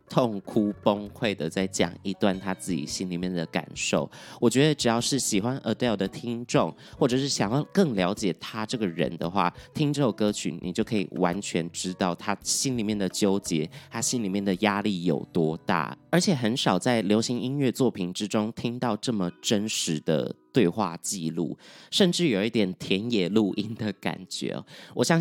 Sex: male